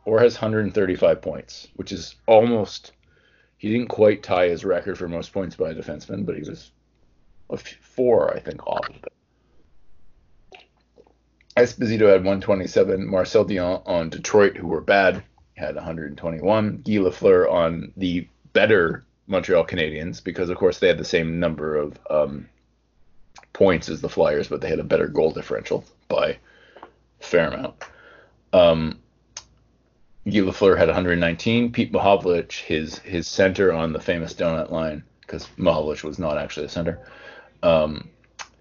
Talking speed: 150 wpm